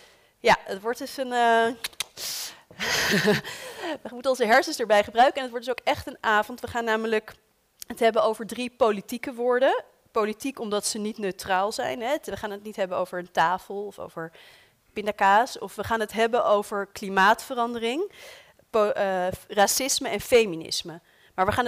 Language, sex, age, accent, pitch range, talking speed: Dutch, female, 30-49, Dutch, 195-250 Hz, 165 wpm